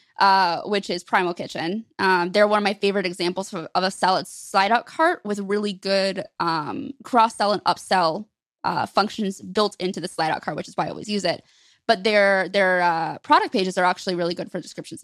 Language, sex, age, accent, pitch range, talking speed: English, female, 20-39, American, 185-240 Hz, 210 wpm